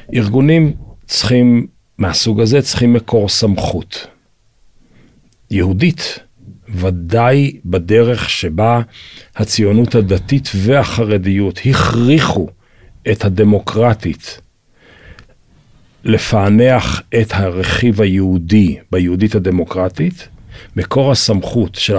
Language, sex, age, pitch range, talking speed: Hebrew, male, 40-59, 100-130 Hz, 70 wpm